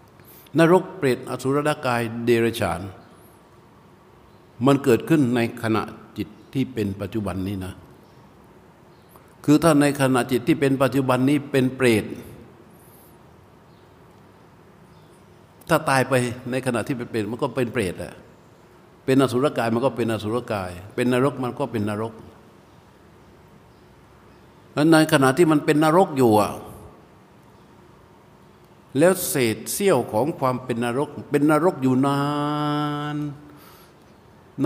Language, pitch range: Thai, 110-145 Hz